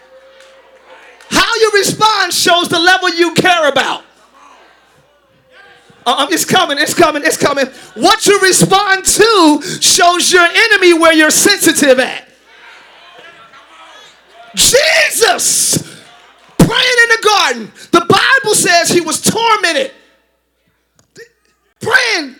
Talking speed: 105 wpm